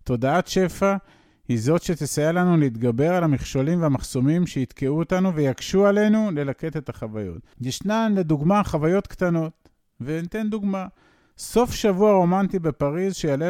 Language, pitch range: Hebrew, 120-180 Hz